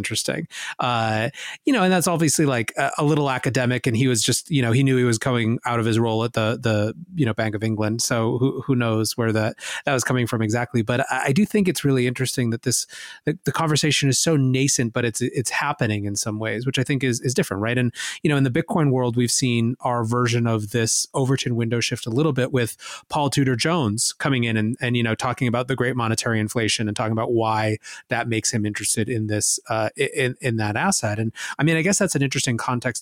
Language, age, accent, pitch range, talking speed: English, 30-49, American, 115-140 Hz, 245 wpm